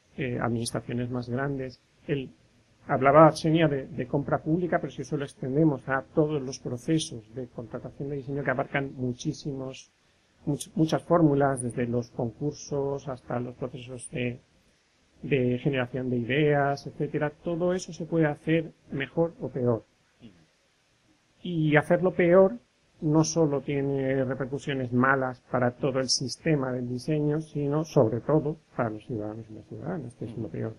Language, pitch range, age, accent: Spanish, 125-150 Hz, 30-49, Spanish